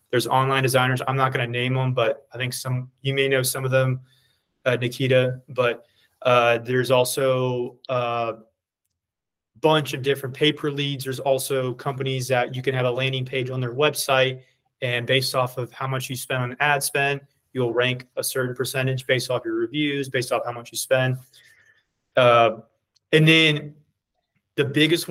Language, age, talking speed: English, 20-39, 175 wpm